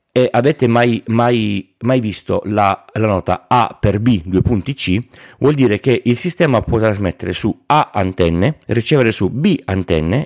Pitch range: 95-135 Hz